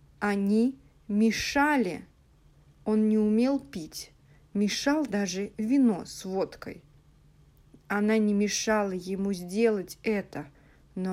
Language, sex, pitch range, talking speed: English, female, 195-250 Hz, 95 wpm